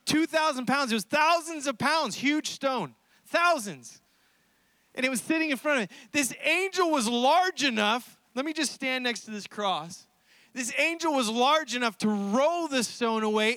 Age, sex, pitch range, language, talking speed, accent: 30-49, male, 240-325 Hz, English, 180 wpm, American